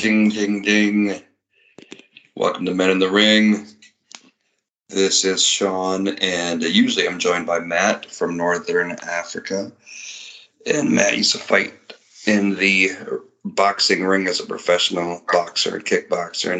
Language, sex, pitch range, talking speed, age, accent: English, male, 85-105 Hz, 130 wpm, 40-59, American